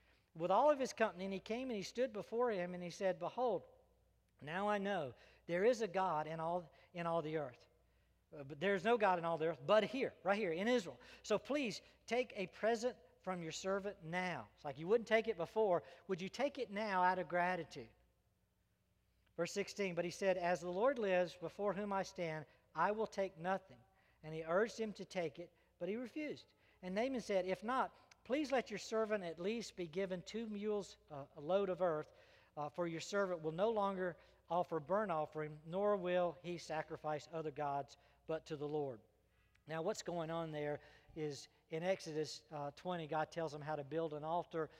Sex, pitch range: male, 155-195 Hz